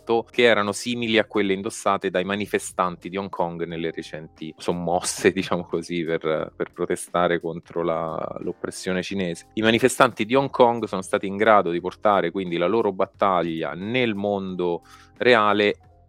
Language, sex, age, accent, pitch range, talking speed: Italian, male, 30-49, native, 85-110 Hz, 155 wpm